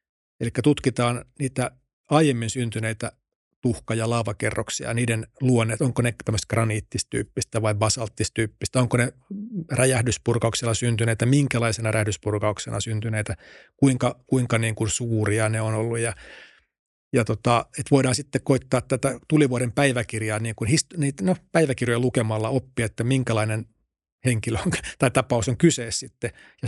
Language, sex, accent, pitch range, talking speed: Finnish, male, native, 115-135 Hz, 135 wpm